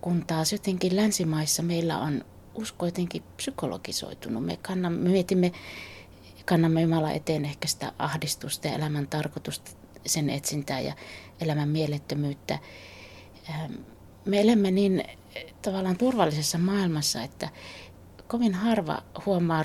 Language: Finnish